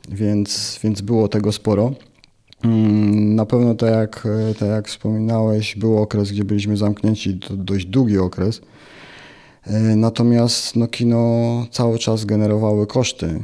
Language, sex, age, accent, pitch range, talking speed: Polish, male, 30-49, native, 100-115 Hz, 125 wpm